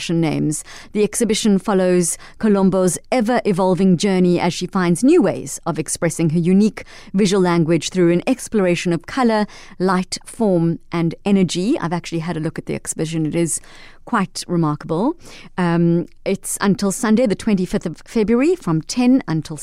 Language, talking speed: English, 155 wpm